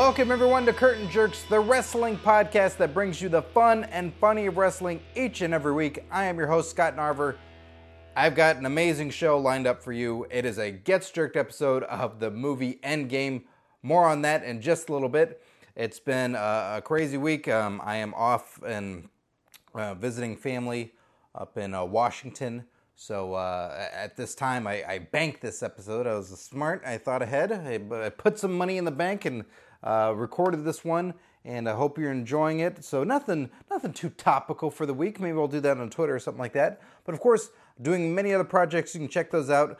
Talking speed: 200 wpm